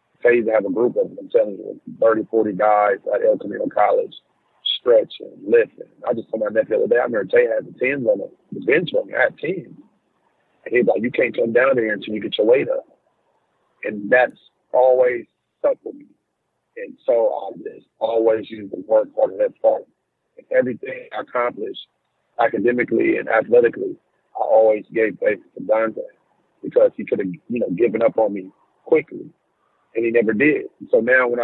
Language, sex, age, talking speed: English, male, 50-69, 200 wpm